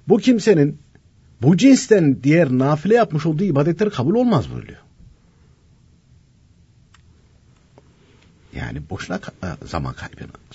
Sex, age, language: male, 60-79, Turkish